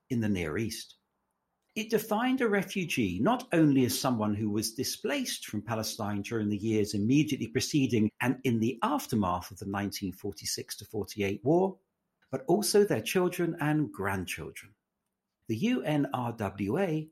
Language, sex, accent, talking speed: English, male, British, 135 wpm